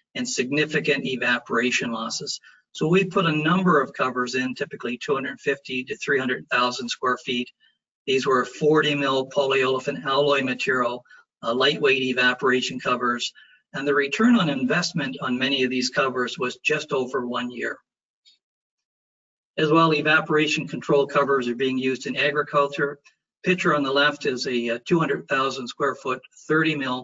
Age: 50-69